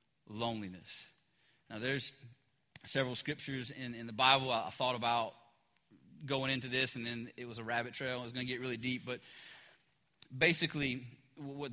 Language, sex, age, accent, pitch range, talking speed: English, male, 30-49, American, 130-200 Hz, 170 wpm